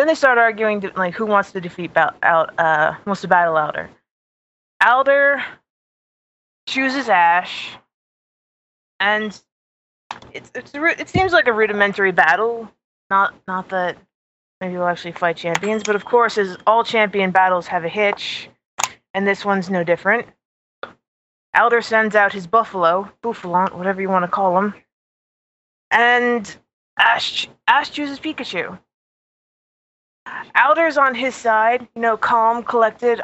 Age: 20-39